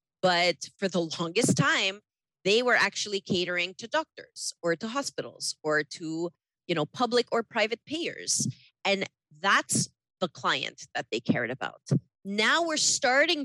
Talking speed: 140 wpm